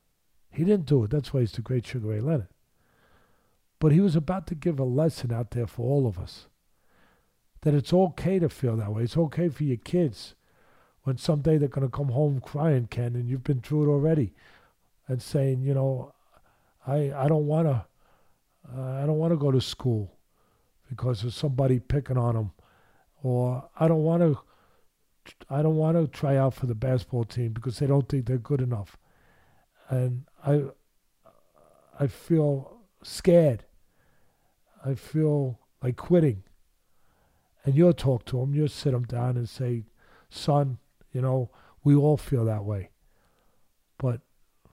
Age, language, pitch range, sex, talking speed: 50-69, English, 120-155 Hz, male, 165 wpm